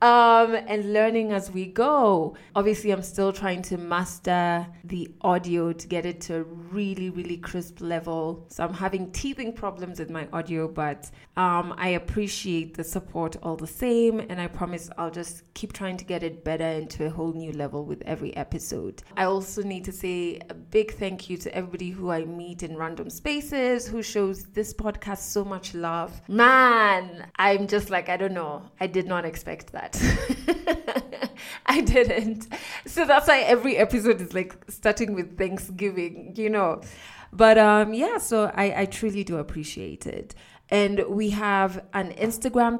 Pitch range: 170-210 Hz